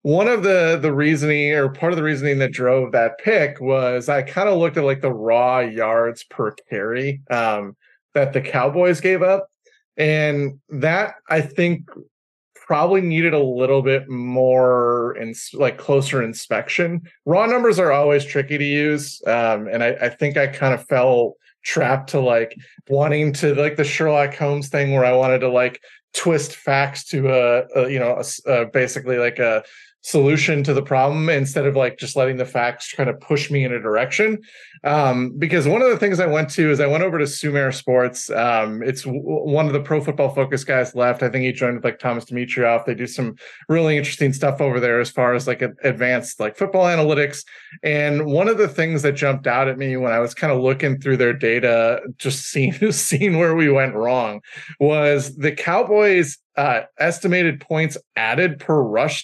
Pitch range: 125-155 Hz